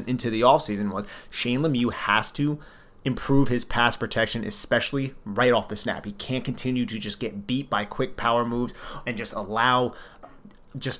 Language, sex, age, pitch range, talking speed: English, male, 30-49, 105-130 Hz, 175 wpm